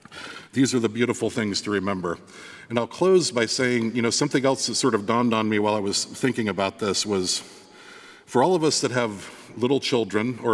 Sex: male